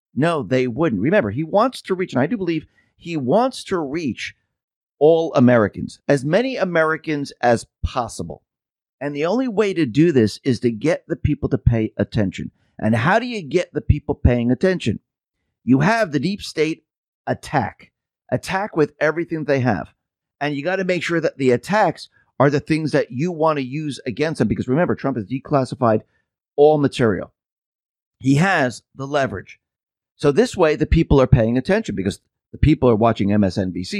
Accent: American